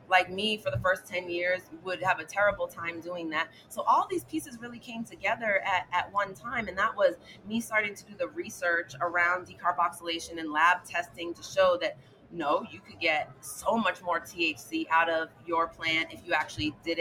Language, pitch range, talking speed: English, 165-200 Hz, 205 wpm